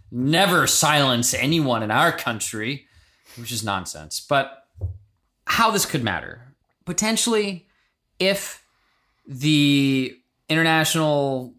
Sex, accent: male, American